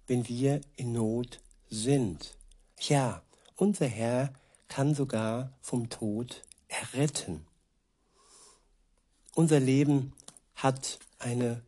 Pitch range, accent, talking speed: 120-140 Hz, German, 85 wpm